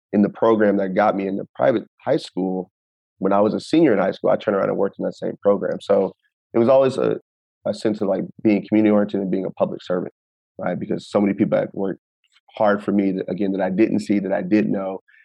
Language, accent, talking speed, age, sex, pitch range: English, American, 250 wpm, 30-49, male, 95-110 Hz